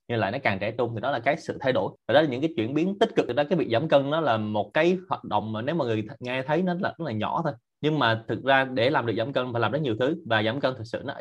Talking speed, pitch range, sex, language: 355 wpm, 115-155 Hz, male, Vietnamese